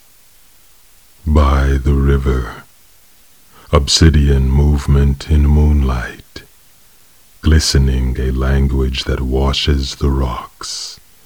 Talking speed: 70 wpm